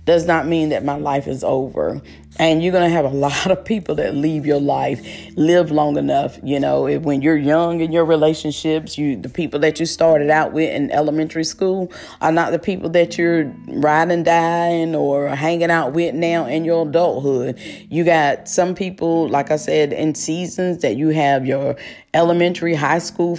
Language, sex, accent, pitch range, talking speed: English, female, American, 145-165 Hz, 190 wpm